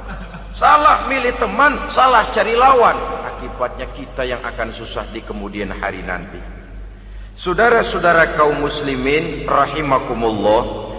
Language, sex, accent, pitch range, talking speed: Indonesian, male, native, 120-195 Hz, 105 wpm